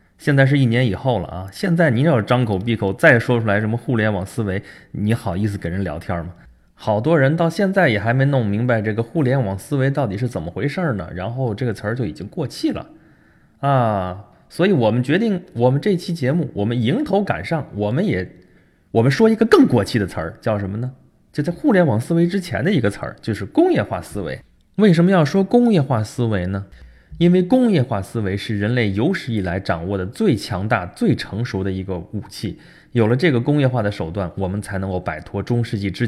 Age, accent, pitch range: 20-39, native, 100-135 Hz